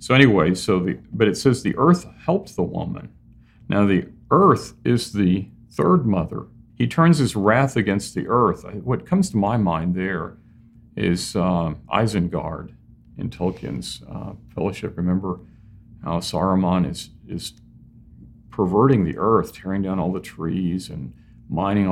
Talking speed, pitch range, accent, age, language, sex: 150 wpm, 90-115 Hz, American, 50-69, English, male